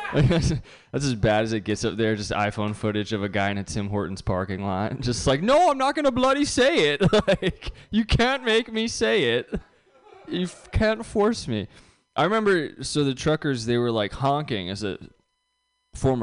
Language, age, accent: English, 20-39, American